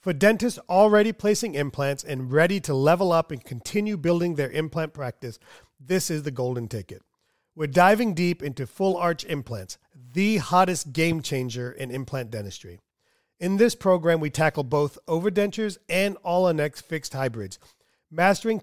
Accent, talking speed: American, 155 wpm